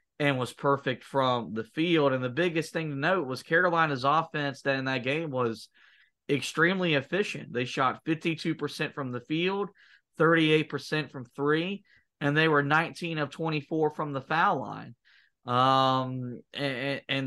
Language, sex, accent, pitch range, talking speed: English, male, American, 135-160 Hz, 155 wpm